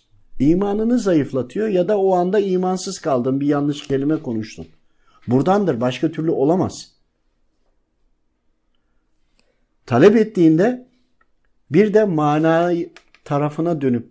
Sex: male